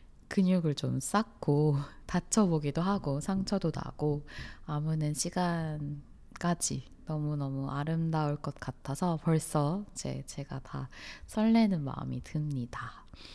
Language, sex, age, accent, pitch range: Korean, female, 20-39, native, 145-195 Hz